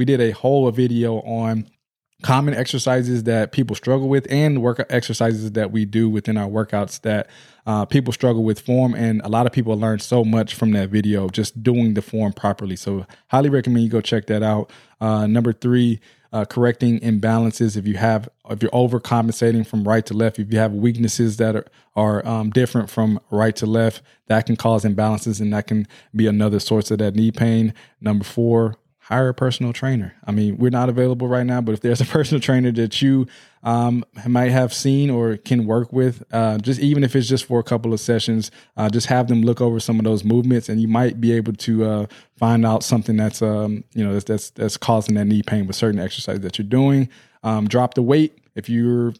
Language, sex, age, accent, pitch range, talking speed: English, male, 20-39, American, 110-125 Hz, 215 wpm